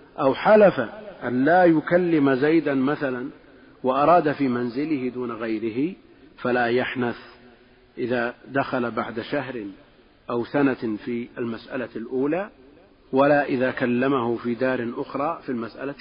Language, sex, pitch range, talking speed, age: Arabic, male, 125-145 Hz, 115 wpm, 40-59